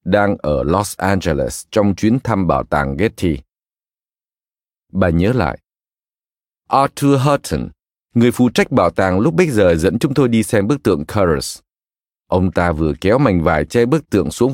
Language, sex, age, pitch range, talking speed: Vietnamese, male, 20-39, 85-130 Hz, 170 wpm